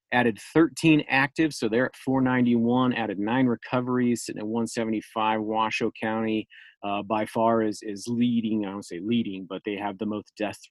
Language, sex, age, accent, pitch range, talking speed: English, male, 30-49, American, 110-130 Hz, 175 wpm